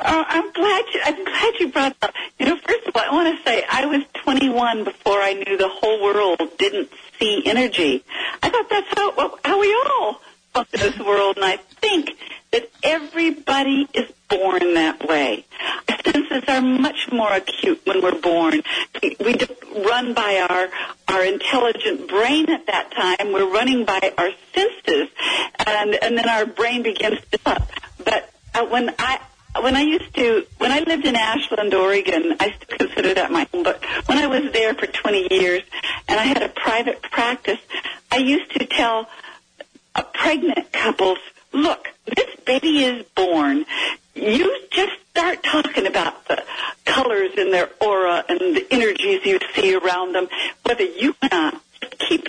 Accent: American